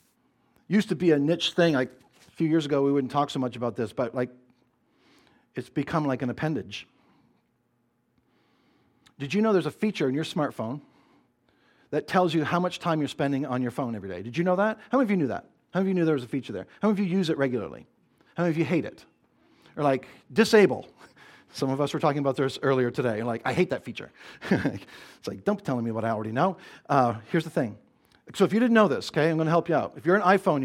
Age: 50-69